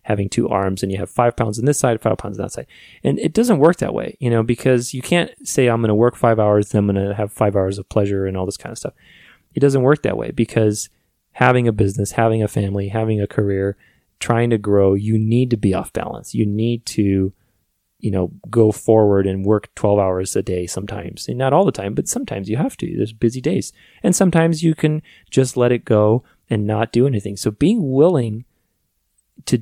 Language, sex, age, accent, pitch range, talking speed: English, male, 30-49, American, 100-120 Hz, 235 wpm